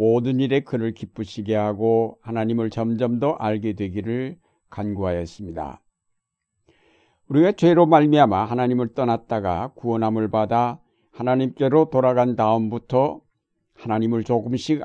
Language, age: Korean, 60-79